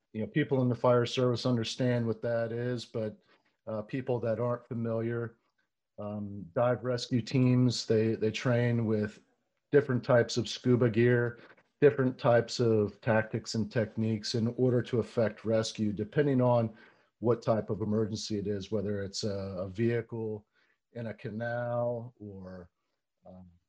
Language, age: English, 50-69